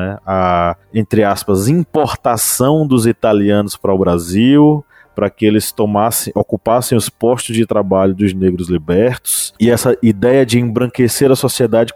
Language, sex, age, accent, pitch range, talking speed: Portuguese, male, 20-39, Brazilian, 100-135 Hz, 135 wpm